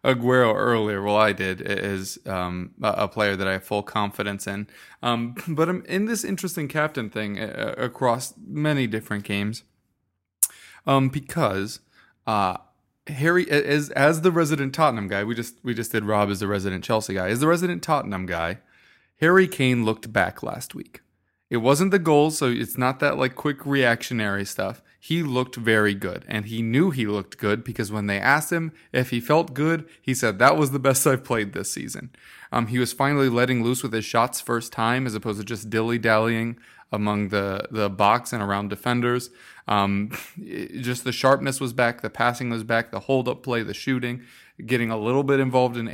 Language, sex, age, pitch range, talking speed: English, male, 20-39, 105-135 Hz, 190 wpm